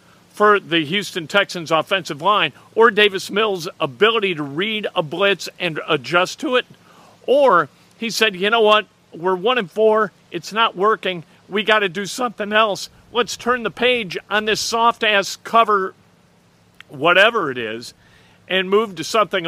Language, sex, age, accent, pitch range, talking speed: English, male, 50-69, American, 160-210 Hz, 160 wpm